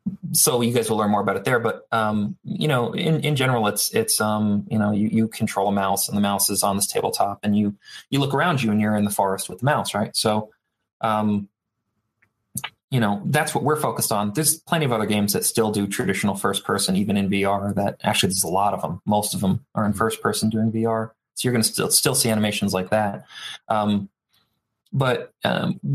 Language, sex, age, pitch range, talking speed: English, male, 20-39, 100-120 Hz, 230 wpm